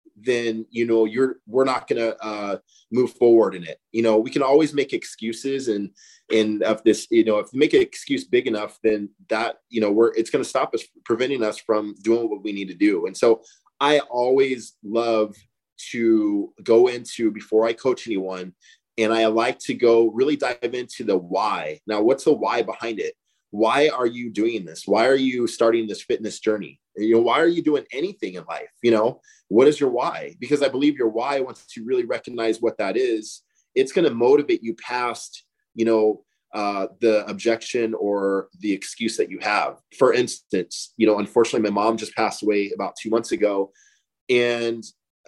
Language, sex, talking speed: English, male, 200 wpm